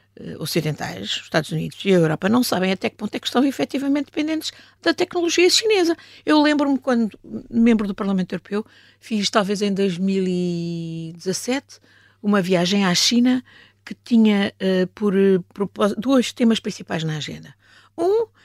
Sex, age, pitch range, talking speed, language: female, 50-69, 175-235 Hz, 145 wpm, Portuguese